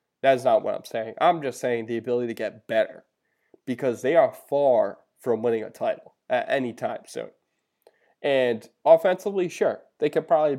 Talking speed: 175 wpm